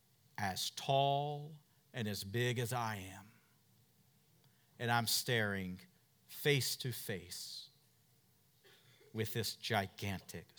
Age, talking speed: 50-69, 95 wpm